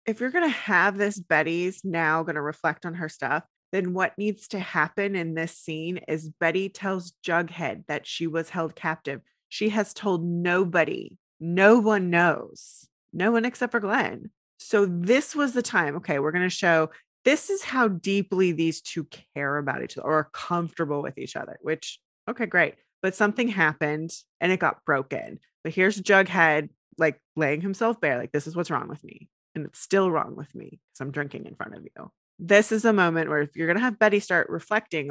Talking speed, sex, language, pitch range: 205 wpm, female, English, 160-205 Hz